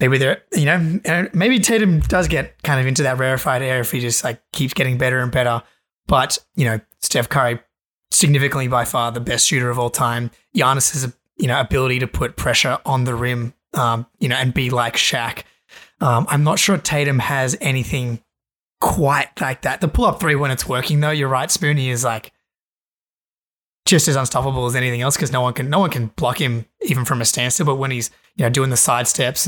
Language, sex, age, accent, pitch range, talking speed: English, male, 20-39, Australian, 120-145 Hz, 220 wpm